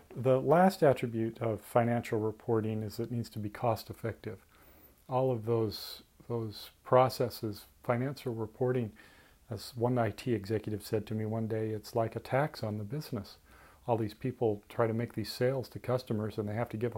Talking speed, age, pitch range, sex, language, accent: 180 wpm, 40-59, 110-125 Hz, male, English, American